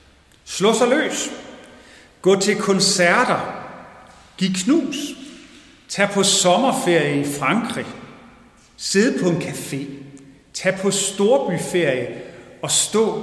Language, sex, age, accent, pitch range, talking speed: Danish, male, 40-59, native, 145-215 Hz, 100 wpm